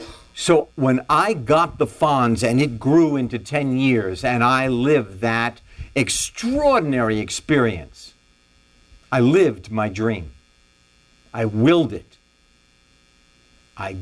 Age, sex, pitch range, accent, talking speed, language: 60-79, male, 95-155 Hz, American, 110 wpm, English